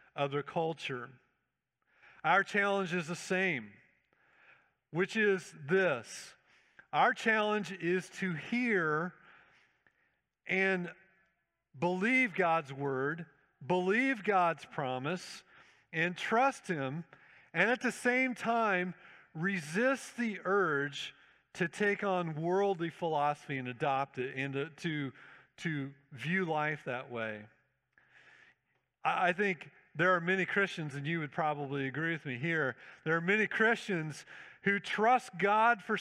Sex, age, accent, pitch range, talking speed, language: male, 50-69, American, 150-195 Hz, 115 wpm, English